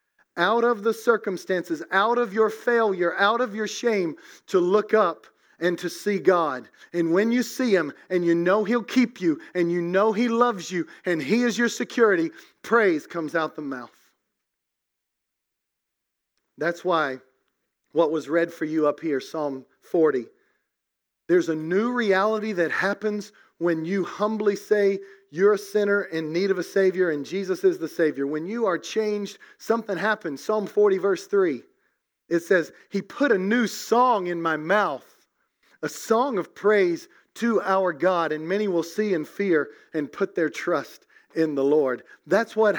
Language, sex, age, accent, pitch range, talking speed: English, male, 40-59, American, 170-220 Hz, 170 wpm